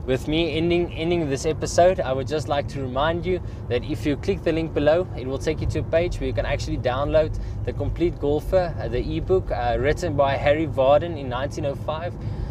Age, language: 20-39, English